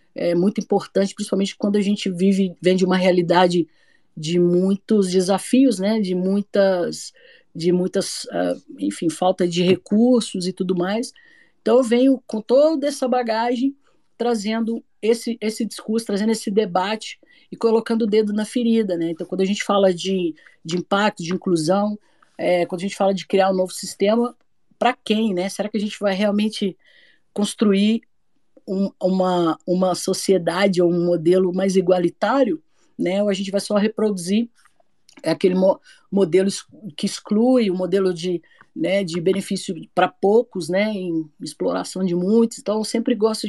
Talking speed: 155 wpm